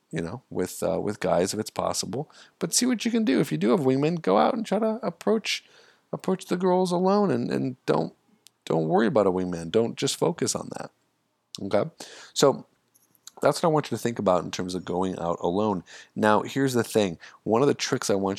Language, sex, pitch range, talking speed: English, male, 85-110 Hz, 225 wpm